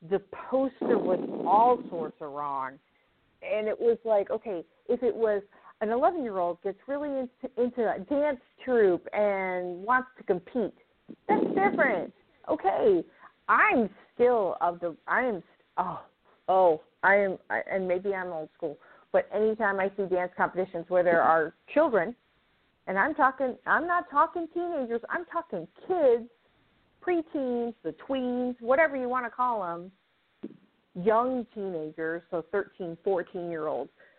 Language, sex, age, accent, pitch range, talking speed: English, female, 40-59, American, 185-265 Hz, 140 wpm